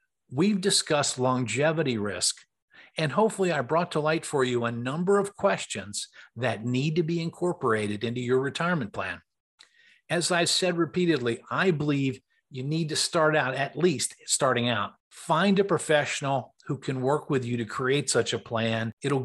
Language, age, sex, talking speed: English, 50-69, male, 170 wpm